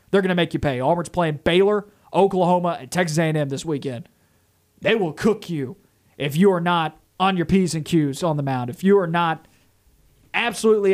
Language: English